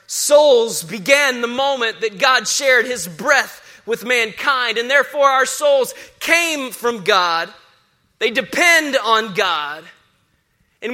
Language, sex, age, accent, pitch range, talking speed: English, male, 20-39, American, 215-290 Hz, 125 wpm